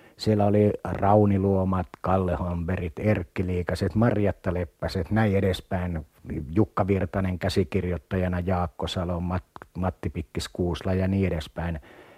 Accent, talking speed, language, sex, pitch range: native, 120 wpm, Finnish, male, 90-115 Hz